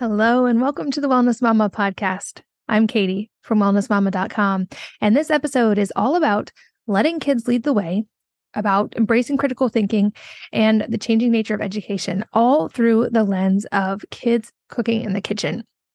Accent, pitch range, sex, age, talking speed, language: American, 205-240 Hz, female, 20-39, 160 wpm, English